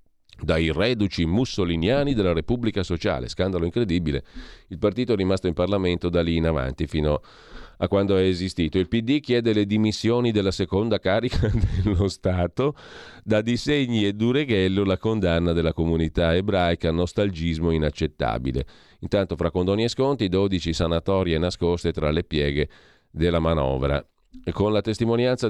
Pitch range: 85-105 Hz